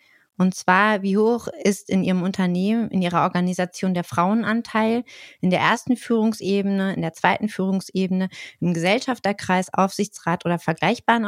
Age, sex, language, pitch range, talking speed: 30-49, female, German, 180-220 Hz, 140 wpm